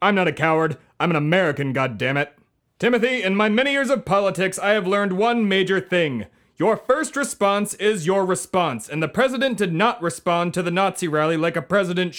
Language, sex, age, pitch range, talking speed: English, male, 30-49, 165-225 Hz, 195 wpm